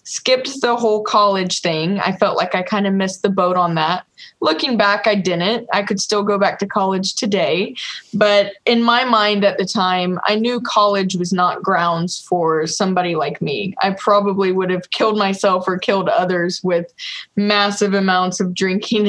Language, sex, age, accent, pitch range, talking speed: English, female, 20-39, American, 195-225 Hz, 185 wpm